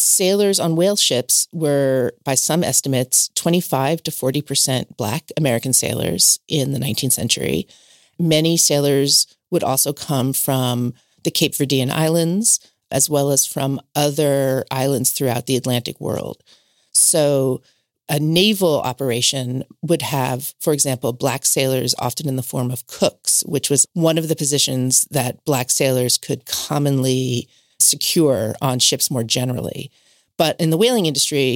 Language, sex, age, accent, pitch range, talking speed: English, female, 40-59, American, 130-155 Hz, 145 wpm